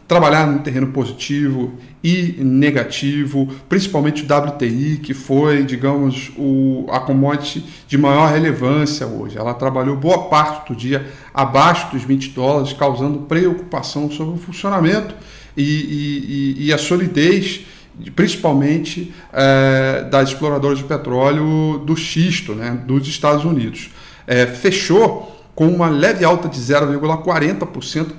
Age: 40-59